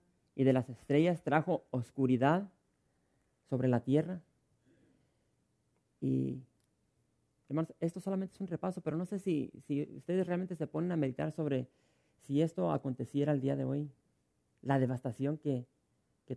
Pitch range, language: 130-155 Hz, English